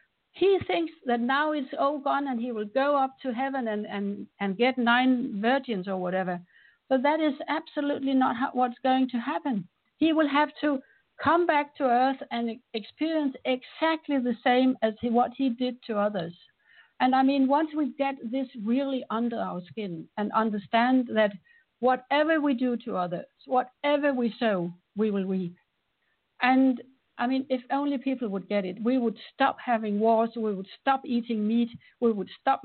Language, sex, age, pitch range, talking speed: English, female, 60-79, 215-270 Hz, 175 wpm